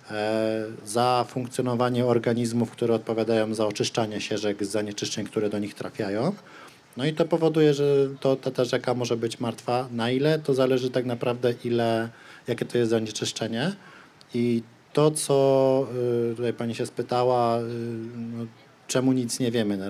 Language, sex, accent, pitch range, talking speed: Polish, male, native, 110-130 Hz, 150 wpm